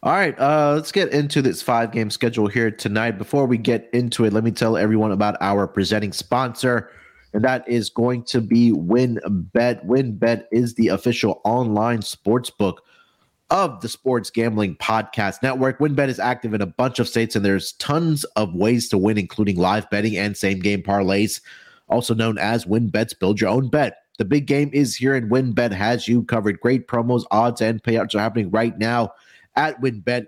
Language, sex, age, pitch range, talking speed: English, male, 30-49, 105-130 Hz, 180 wpm